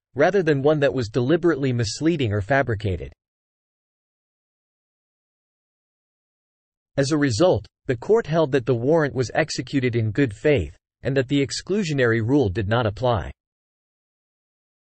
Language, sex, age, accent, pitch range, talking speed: English, male, 40-59, American, 115-155 Hz, 125 wpm